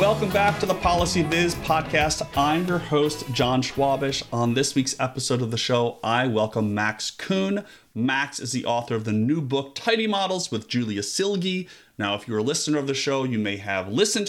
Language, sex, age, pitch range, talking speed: English, male, 30-49, 115-175 Hz, 200 wpm